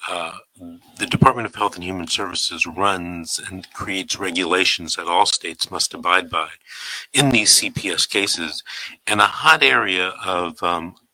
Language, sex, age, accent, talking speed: English, male, 50-69, American, 150 wpm